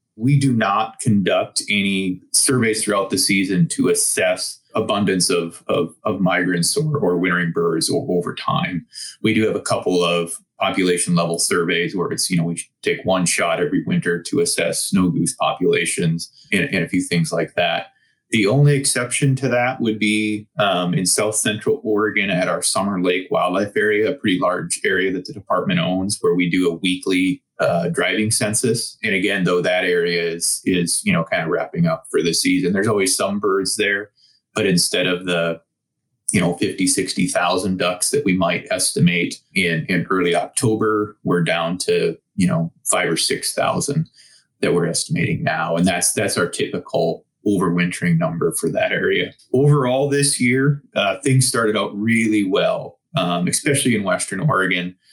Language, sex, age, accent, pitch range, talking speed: English, male, 30-49, American, 90-130 Hz, 180 wpm